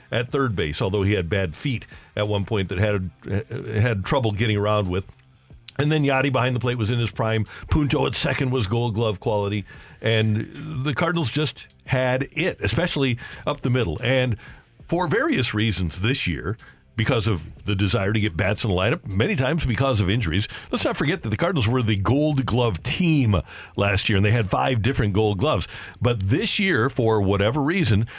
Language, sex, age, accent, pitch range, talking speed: English, male, 50-69, American, 100-130 Hz, 195 wpm